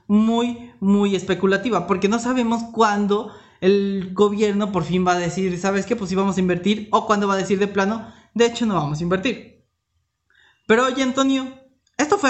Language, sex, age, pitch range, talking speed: Spanish, male, 20-39, 185-230 Hz, 190 wpm